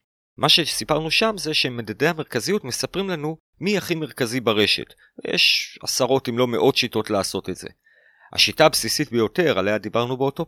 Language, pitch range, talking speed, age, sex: Hebrew, 115-160 Hz, 155 wpm, 40-59, male